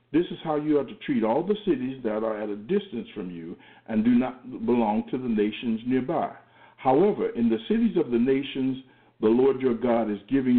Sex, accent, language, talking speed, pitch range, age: male, American, English, 215 wpm, 120-200 Hz, 60-79